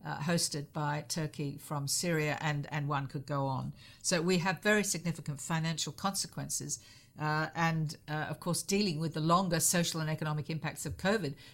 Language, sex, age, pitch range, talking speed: English, female, 50-69, 140-165 Hz, 170 wpm